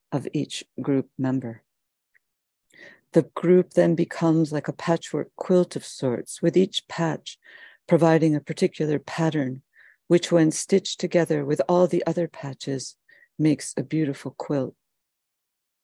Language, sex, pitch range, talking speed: English, female, 135-165 Hz, 130 wpm